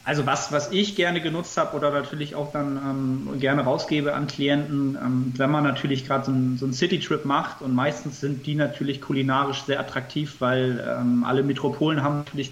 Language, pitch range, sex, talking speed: German, 130-150 Hz, male, 190 wpm